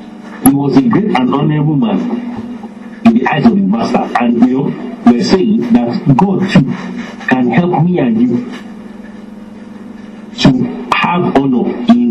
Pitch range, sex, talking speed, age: 205-235 Hz, male, 145 wpm, 50-69